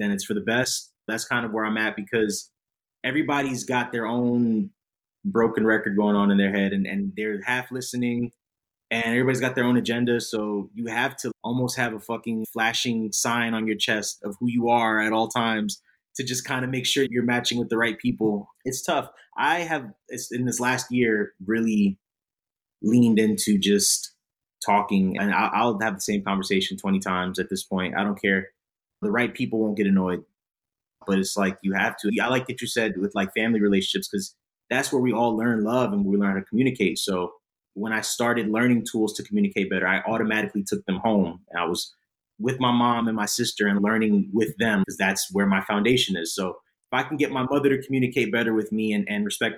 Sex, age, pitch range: male, 20-39, 100-120 Hz